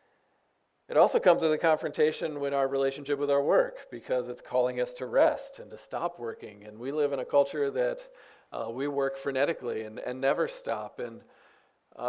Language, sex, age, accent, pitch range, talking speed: English, male, 40-59, American, 120-150 Hz, 195 wpm